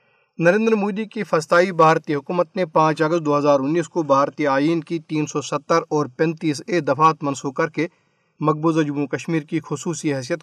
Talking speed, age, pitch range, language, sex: 180 wpm, 40-59, 145-170 Hz, Urdu, male